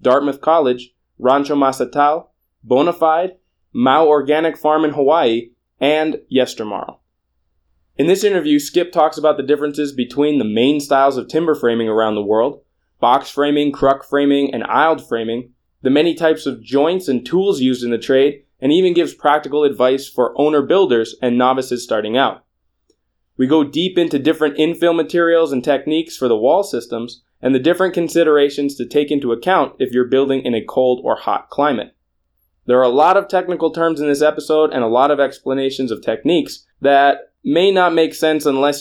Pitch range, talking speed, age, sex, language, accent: 125-160 Hz, 175 wpm, 20-39, male, English, American